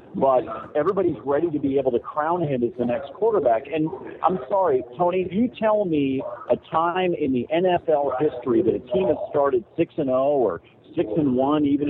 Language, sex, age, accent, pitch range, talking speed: English, male, 40-59, American, 125-180 Hz, 190 wpm